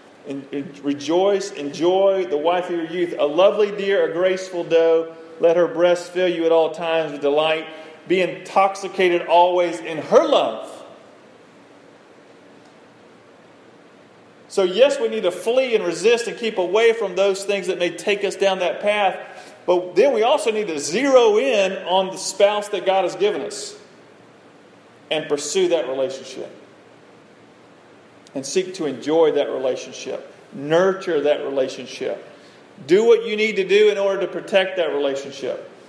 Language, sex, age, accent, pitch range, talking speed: English, male, 40-59, American, 155-195 Hz, 155 wpm